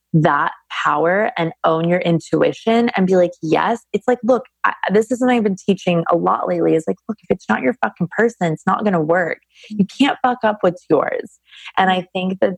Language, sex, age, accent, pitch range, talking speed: English, female, 20-39, American, 160-205 Hz, 220 wpm